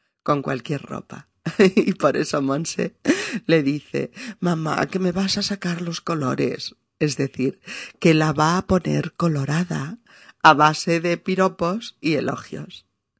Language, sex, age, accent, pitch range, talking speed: Spanish, female, 40-59, Spanish, 145-200 Hz, 140 wpm